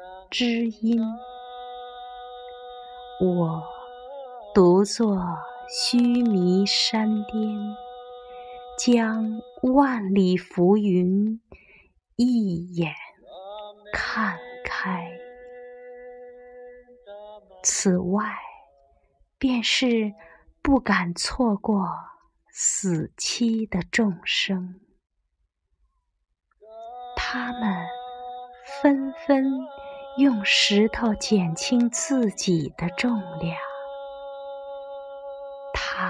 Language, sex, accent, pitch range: Chinese, female, native, 185-245 Hz